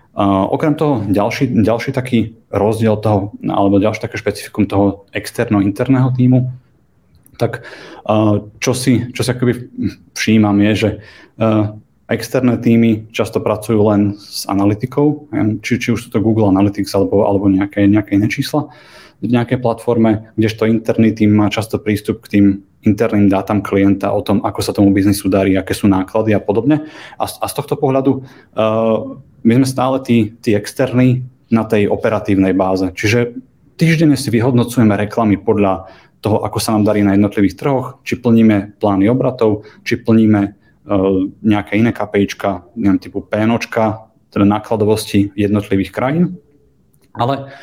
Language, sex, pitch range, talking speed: Czech, male, 100-125 Hz, 150 wpm